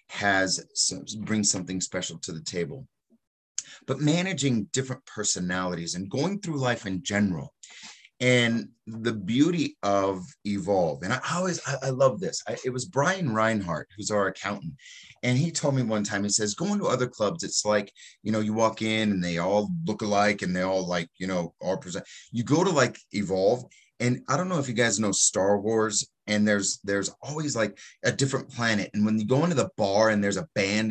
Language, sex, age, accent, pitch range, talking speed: English, male, 30-49, American, 100-135 Hz, 200 wpm